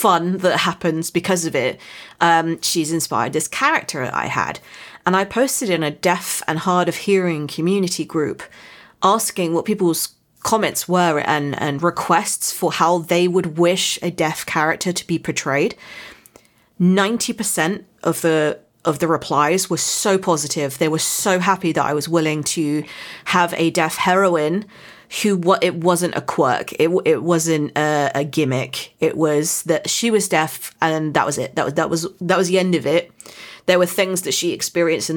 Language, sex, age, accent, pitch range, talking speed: English, female, 30-49, British, 155-180 Hz, 180 wpm